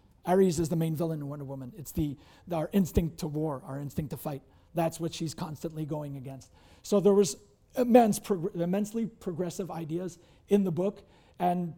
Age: 30-49